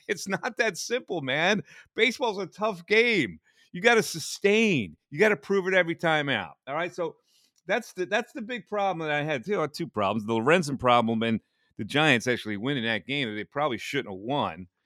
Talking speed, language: 210 wpm, English